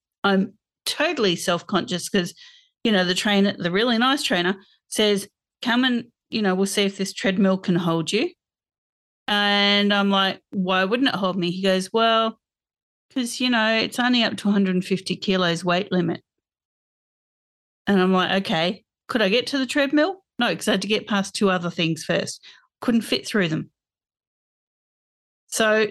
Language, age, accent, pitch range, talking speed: English, 40-59, Australian, 180-225 Hz, 170 wpm